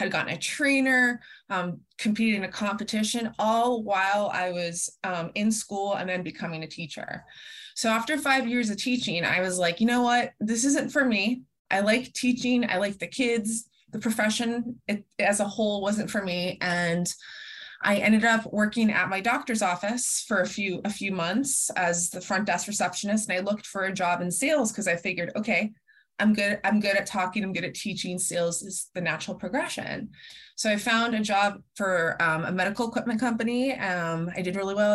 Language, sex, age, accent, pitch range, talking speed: English, female, 20-39, American, 185-230 Hz, 200 wpm